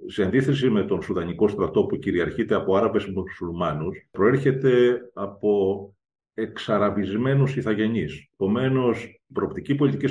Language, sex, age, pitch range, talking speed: Greek, male, 40-59, 105-135 Hz, 120 wpm